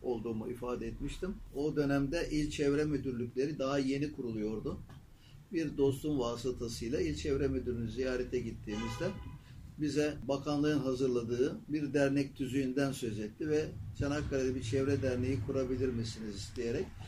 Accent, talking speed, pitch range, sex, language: native, 125 wpm, 120-140 Hz, male, Turkish